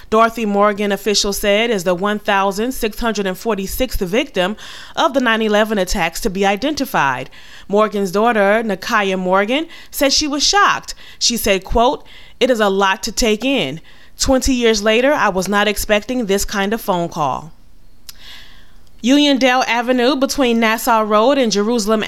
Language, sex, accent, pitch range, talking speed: English, female, American, 195-250 Hz, 140 wpm